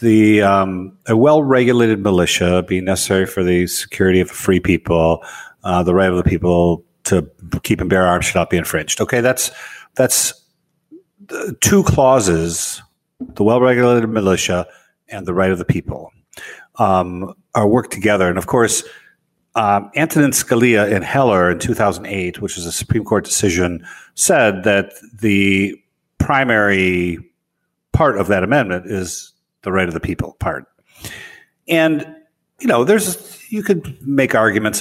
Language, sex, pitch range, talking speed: English, male, 90-125 Hz, 150 wpm